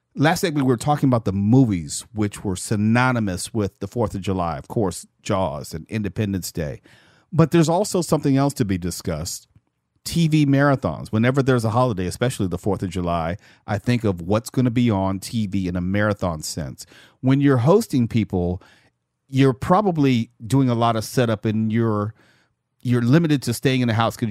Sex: male